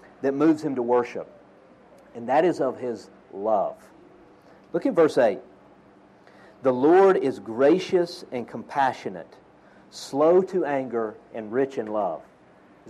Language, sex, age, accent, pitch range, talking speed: English, male, 50-69, American, 130-195 Hz, 135 wpm